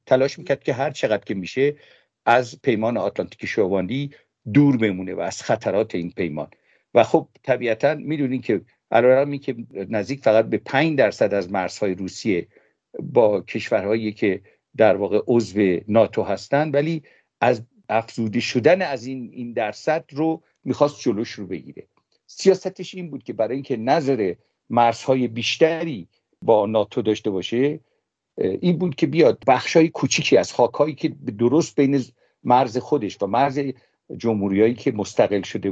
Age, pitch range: 50-69, 110-150 Hz